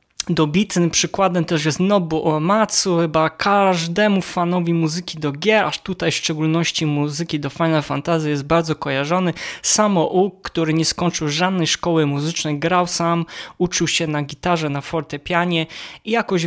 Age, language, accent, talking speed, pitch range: 20-39, Polish, native, 150 wpm, 150-175 Hz